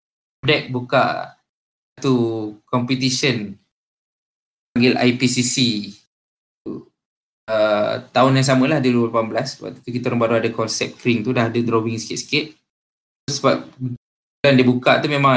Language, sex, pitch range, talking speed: Malay, male, 115-140 Hz, 135 wpm